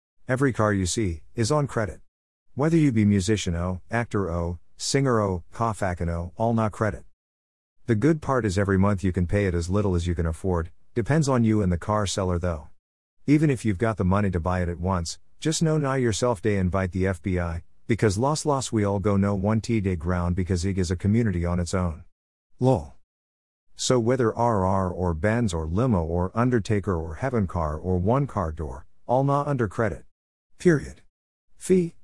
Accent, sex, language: American, male, English